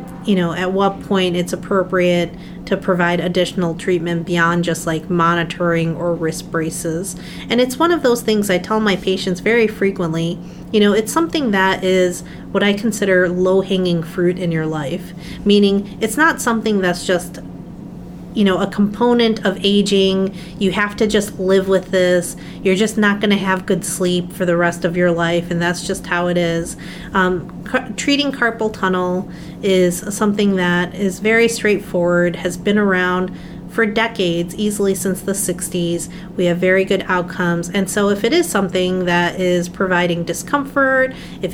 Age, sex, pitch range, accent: 30-49, female, 175-205 Hz, American